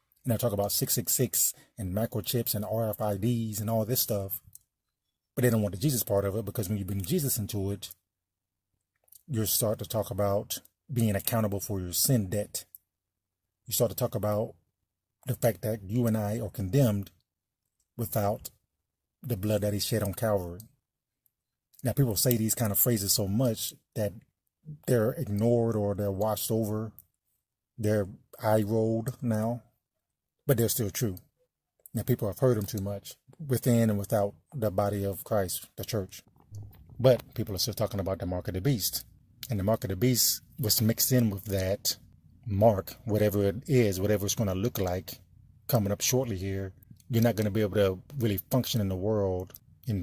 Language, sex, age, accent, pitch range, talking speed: English, male, 30-49, American, 100-120 Hz, 180 wpm